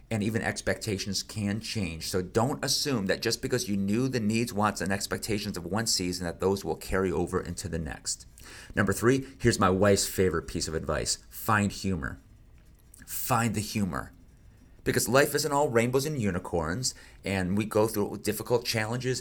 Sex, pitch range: male, 95-125 Hz